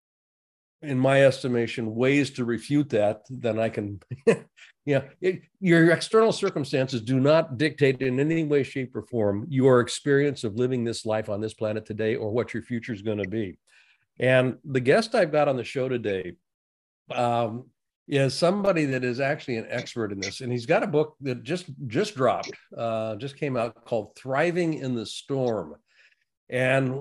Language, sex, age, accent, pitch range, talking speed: English, male, 50-69, American, 120-145 Hz, 180 wpm